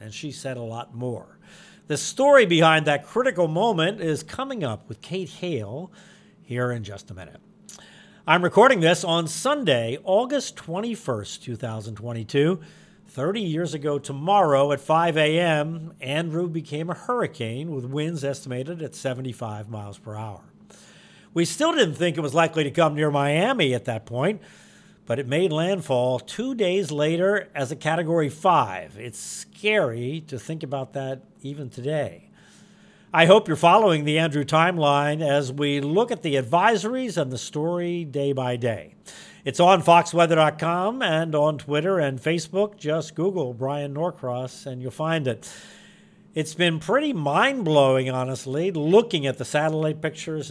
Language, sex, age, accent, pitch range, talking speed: English, male, 50-69, American, 135-185 Hz, 150 wpm